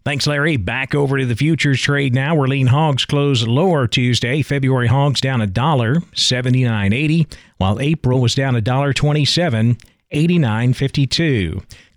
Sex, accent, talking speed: male, American, 140 wpm